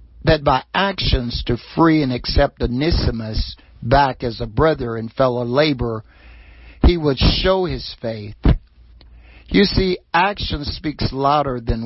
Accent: American